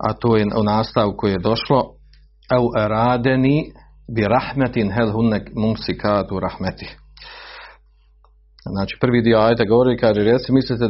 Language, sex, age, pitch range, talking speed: Croatian, male, 40-59, 100-130 Hz, 115 wpm